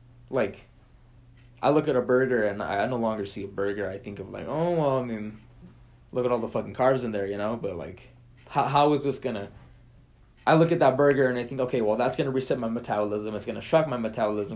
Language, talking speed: English, 255 wpm